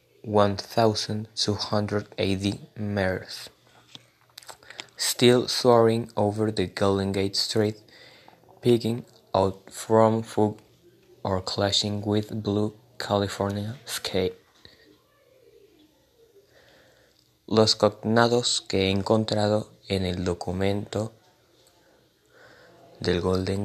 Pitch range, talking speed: 95-115 Hz, 75 wpm